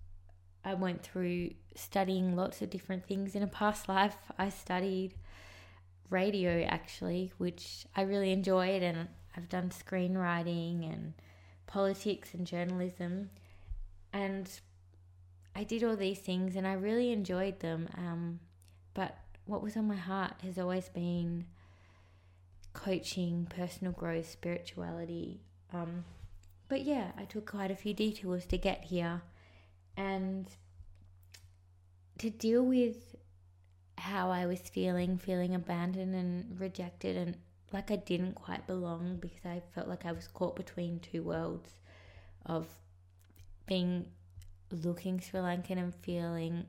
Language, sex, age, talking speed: English, female, 20-39, 130 wpm